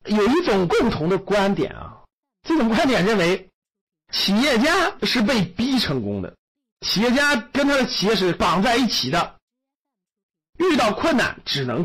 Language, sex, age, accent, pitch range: Chinese, male, 50-69, native, 165-250 Hz